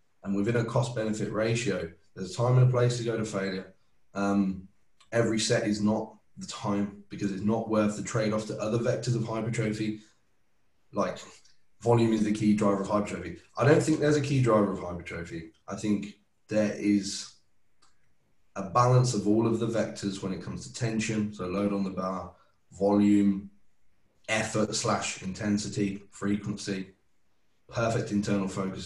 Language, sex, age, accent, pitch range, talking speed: English, male, 20-39, British, 100-115 Hz, 170 wpm